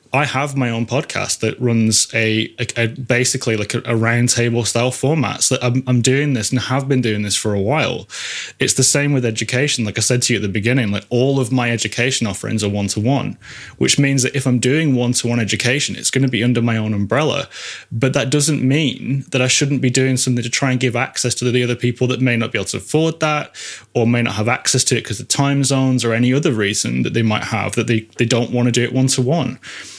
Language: English